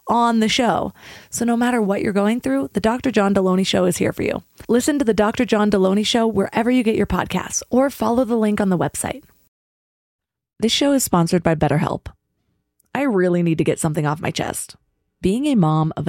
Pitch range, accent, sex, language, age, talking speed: 165-220 Hz, American, female, English, 20-39, 215 wpm